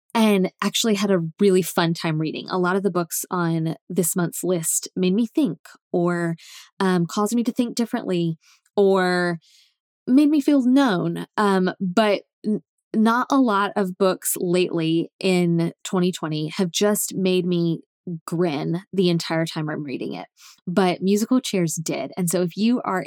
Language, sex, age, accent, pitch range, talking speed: English, female, 10-29, American, 170-210 Hz, 160 wpm